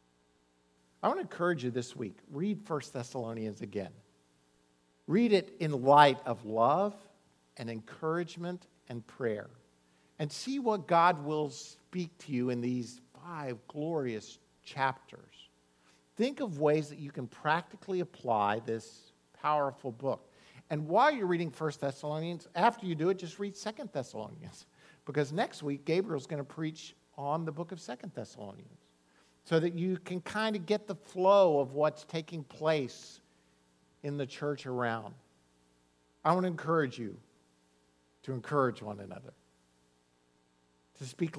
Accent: American